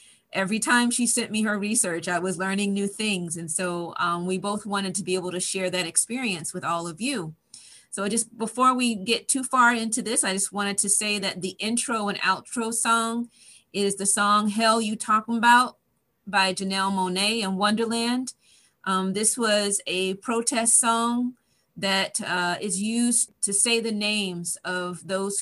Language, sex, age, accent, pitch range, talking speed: English, female, 30-49, American, 185-225 Hz, 180 wpm